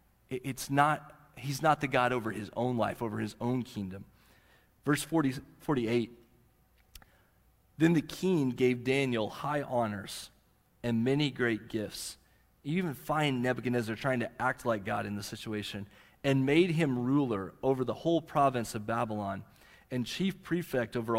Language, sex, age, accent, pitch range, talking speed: English, male, 30-49, American, 105-140 Hz, 150 wpm